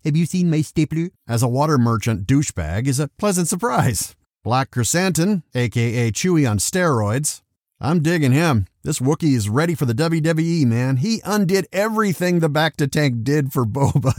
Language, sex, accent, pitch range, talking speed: English, male, American, 115-170 Hz, 175 wpm